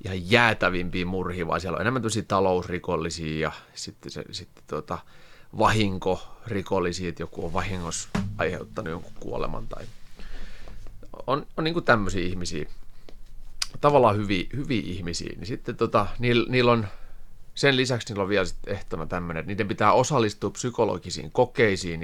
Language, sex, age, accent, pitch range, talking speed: Finnish, male, 30-49, native, 85-110 Hz, 140 wpm